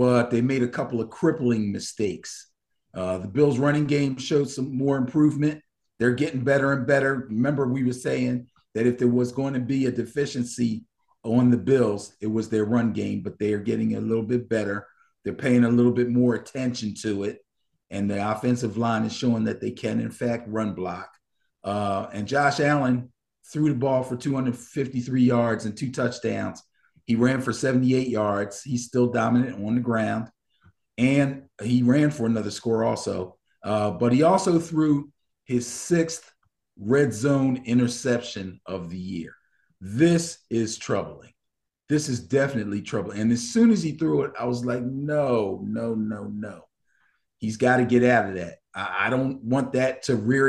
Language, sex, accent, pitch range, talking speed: English, male, American, 110-135 Hz, 180 wpm